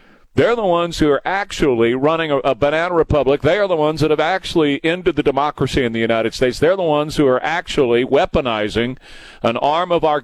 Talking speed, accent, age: 210 wpm, American, 50-69